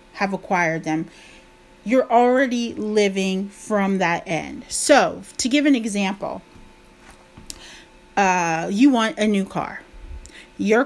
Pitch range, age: 195-240 Hz, 30-49